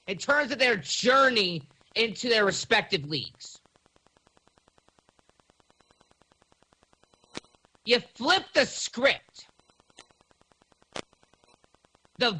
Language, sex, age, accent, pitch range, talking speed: English, male, 40-59, American, 190-265 Hz, 70 wpm